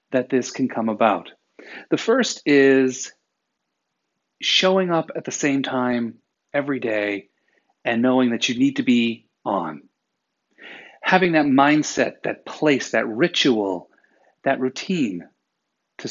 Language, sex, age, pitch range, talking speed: English, male, 40-59, 120-150 Hz, 125 wpm